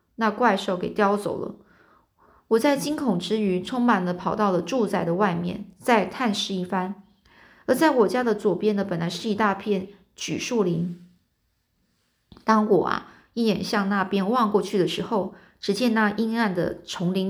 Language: Chinese